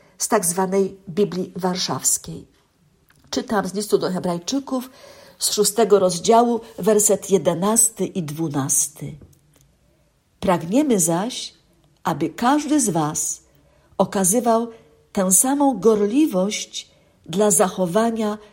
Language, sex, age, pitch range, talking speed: Polish, female, 50-69, 175-225 Hz, 95 wpm